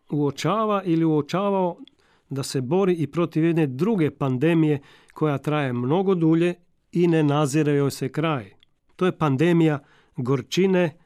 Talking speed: 130 wpm